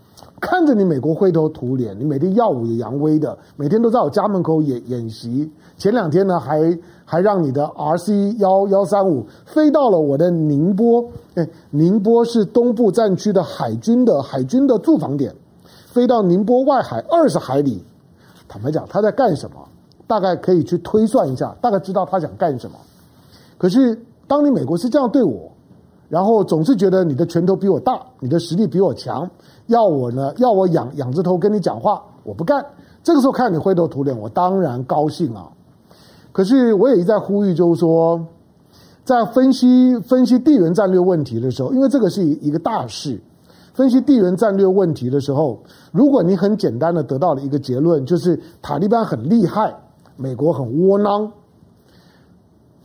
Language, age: Chinese, 50-69